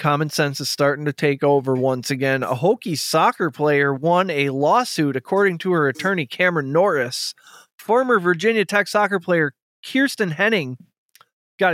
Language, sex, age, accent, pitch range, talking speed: English, male, 20-39, American, 145-180 Hz, 155 wpm